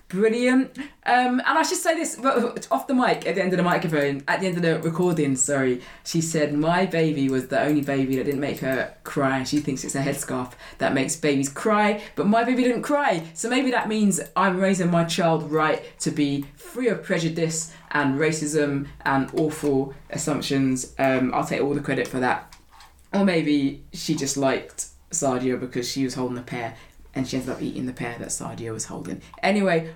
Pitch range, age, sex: 135-185 Hz, 20-39, female